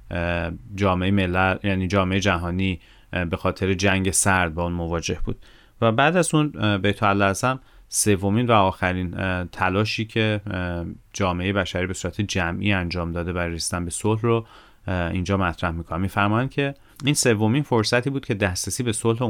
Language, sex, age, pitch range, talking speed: Persian, male, 30-49, 95-110 Hz, 155 wpm